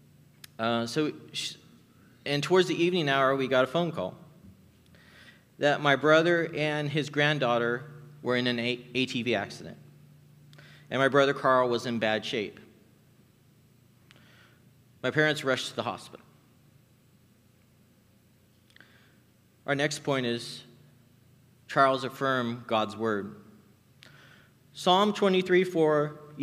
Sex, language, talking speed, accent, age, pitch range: male, English, 105 wpm, American, 40-59, 120-150 Hz